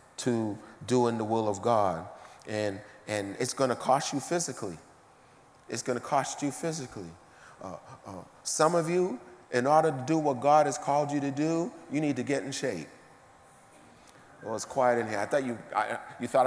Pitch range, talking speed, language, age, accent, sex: 125-155 Hz, 195 wpm, English, 40-59, American, male